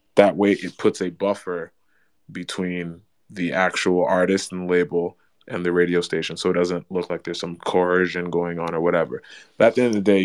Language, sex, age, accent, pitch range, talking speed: English, male, 20-39, American, 90-100 Hz, 205 wpm